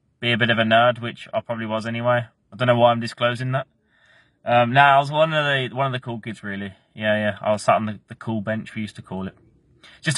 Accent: British